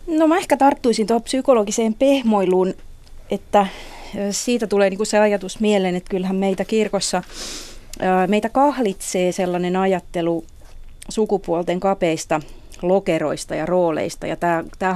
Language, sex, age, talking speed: Finnish, female, 30-49, 115 wpm